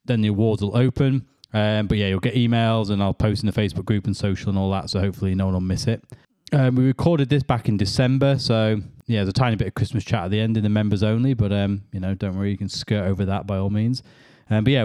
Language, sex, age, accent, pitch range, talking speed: English, male, 20-39, British, 100-125 Hz, 285 wpm